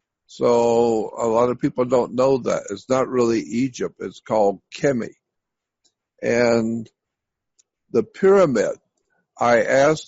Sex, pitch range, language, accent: male, 120-160 Hz, English, American